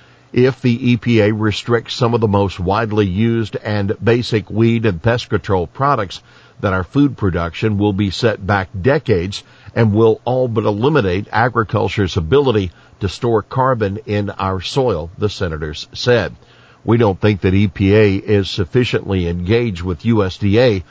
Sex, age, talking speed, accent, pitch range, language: male, 50-69, 150 wpm, American, 100-120 Hz, English